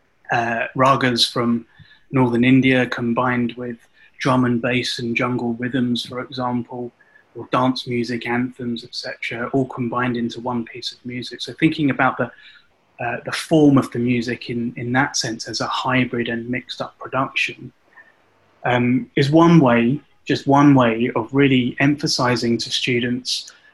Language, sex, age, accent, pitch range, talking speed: English, male, 20-39, British, 120-135 Hz, 150 wpm